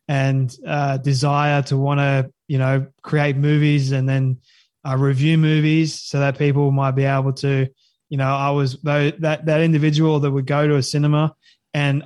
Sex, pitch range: male, 140-155 Hz